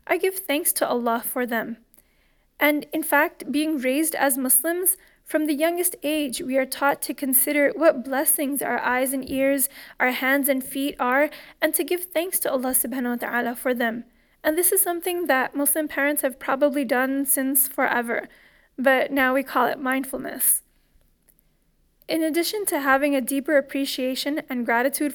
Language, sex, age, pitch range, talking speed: English, female, 20-39, 260-300 Hz, 170 wpm